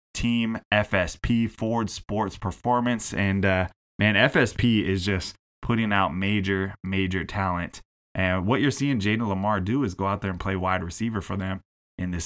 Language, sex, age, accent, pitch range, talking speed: English, male, 20-39, American, 95-110 Hz, 170 wpm